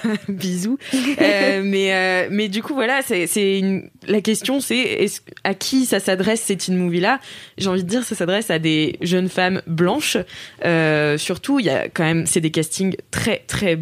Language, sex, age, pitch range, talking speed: French, female, 20-39, 165-215 Hz, 195 wpm